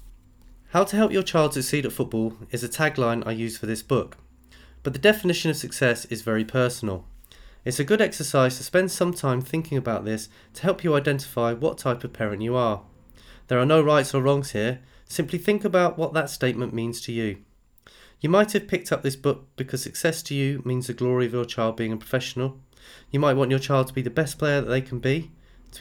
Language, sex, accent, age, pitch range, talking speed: English, male, British, 30-49, 115-150 Hz, 225 wpm